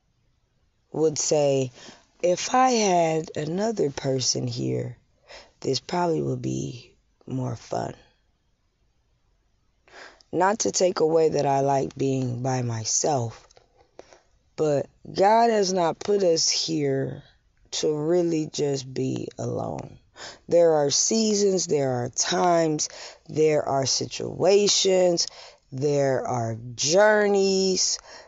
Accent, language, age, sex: American, English, 20-39, female